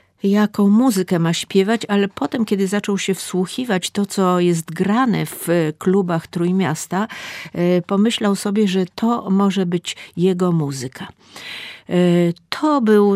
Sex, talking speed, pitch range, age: female, 125 wpm, 175-210 Hz, 50-69